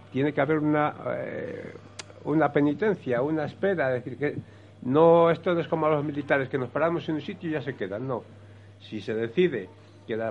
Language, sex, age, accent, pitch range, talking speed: Spanish, male, 60-79, Spanish, 115-150 Hz, 210 wpm